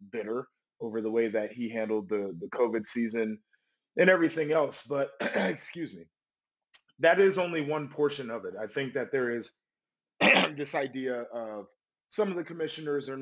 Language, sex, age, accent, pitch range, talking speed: English, male, 20-39, American, 115-145 Hz, 170 wpm